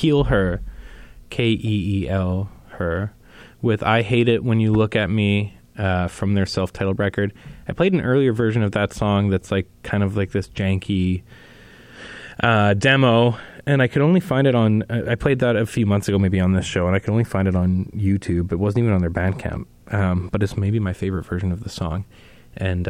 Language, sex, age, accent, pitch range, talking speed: German, male, 20-39, American, 95-115 Hz, 205 wpm